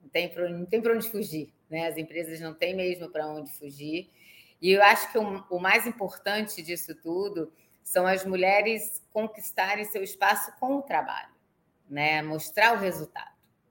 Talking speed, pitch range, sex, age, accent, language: 160 wpm, 155-205 Hz, female, 20-39, Brazilian, Portuguese